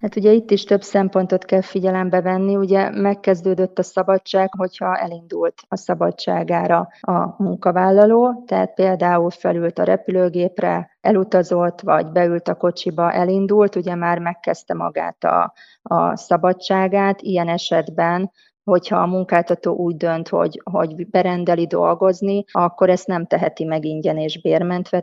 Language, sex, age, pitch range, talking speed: Hungarian, female, 30-49, 160-190 Hz, 135 wpm